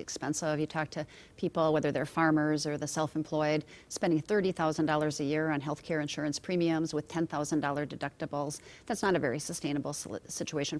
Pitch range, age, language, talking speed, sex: 150-170 Hz, 40-59, English, 165 wpm, female